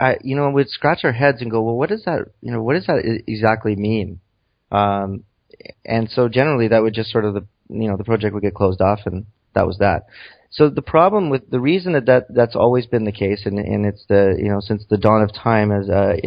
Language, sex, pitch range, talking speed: English, male, 100-120 Hz, 255 wpm